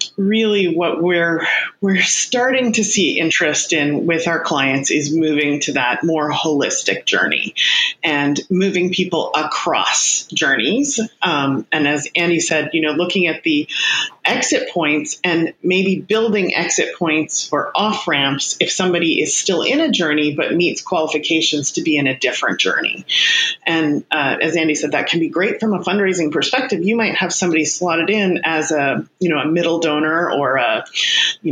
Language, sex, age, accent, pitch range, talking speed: English, female, 30-49, American, 155-205 Hz, 170 wpm